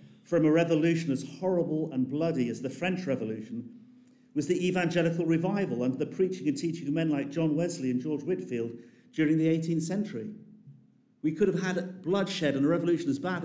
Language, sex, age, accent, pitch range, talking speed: English, male, 50-69, British, 140-180 Hz, 185 wpm